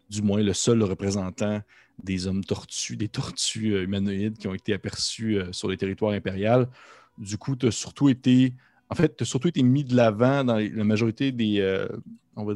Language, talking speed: French, 185 wpm